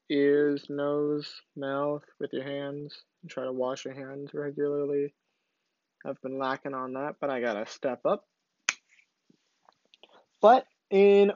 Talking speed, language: 130 wpm, English